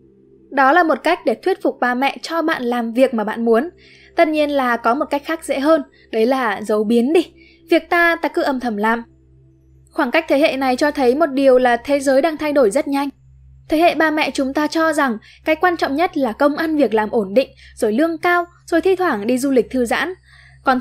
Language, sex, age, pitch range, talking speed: Vietnamese, female, 10-29, 230-305 Hz, 245 wpm